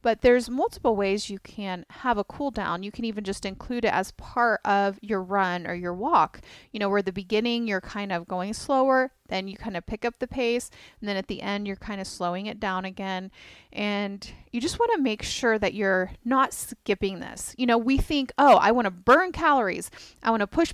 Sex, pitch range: female, 200-265 Hz